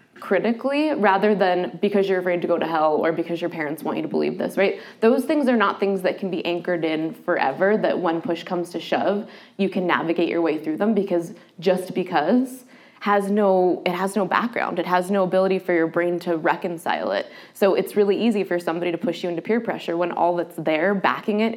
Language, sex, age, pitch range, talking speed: English, female, 20-39, 170-205 Hz, 225 wpm